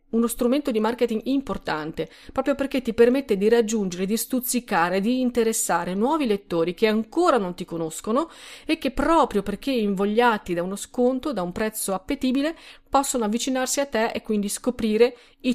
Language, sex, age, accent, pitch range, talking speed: Italian, female, 40-59, native, 195-255 Hz, 160 wpm